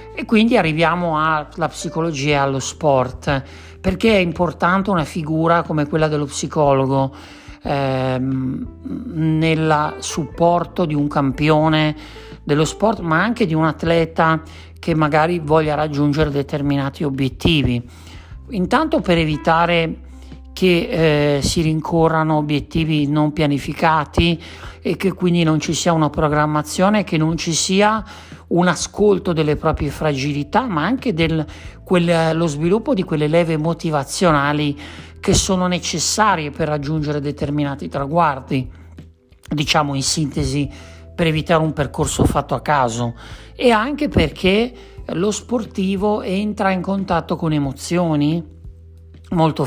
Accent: native